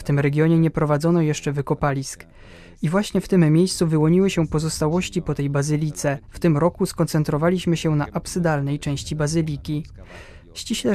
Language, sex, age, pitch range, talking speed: Polish, male, 20-39, 145-170 Hz, 155 wpm